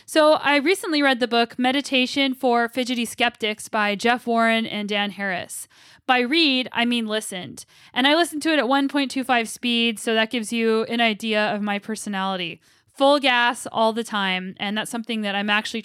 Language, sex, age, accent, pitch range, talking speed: English, female, 10-29, American, 215-260 Hz, 185 wpm